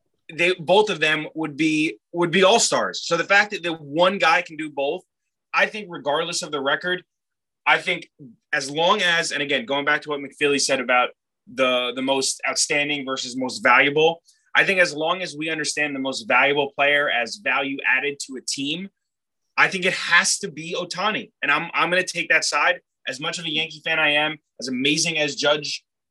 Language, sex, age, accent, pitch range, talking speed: English, male, 20-39, American, 140-175 Hz, 205 wpm